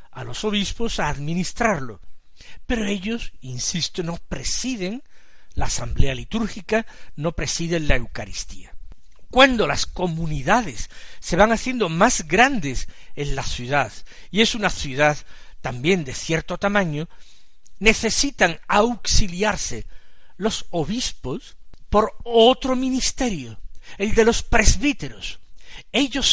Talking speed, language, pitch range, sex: 110 wpm, Spanish, 140-210 Hz, male